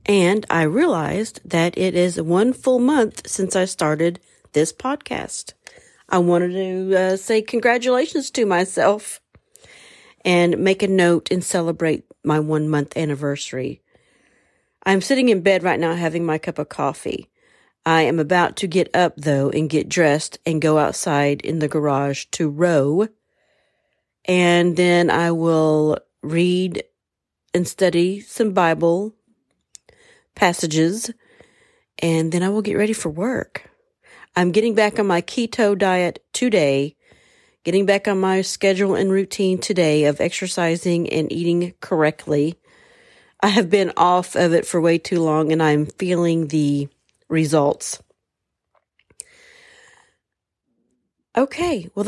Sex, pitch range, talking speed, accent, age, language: female, 165-215 Hz, 135 wpm, American, 40-59, English